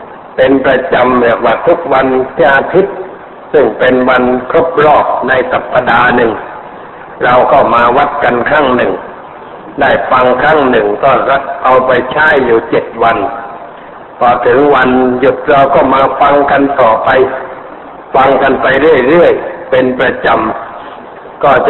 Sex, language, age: male, Thai, 60-79